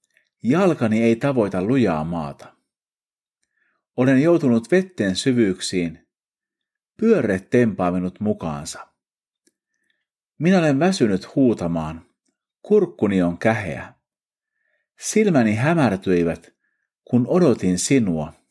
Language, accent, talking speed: Finnish, native, 80 wpm